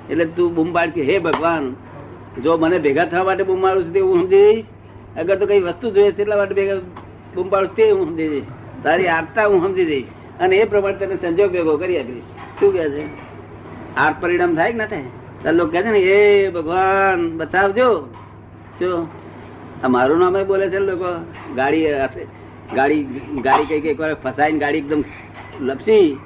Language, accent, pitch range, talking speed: Gujarati, native, 165-215 Hz, 105 wpm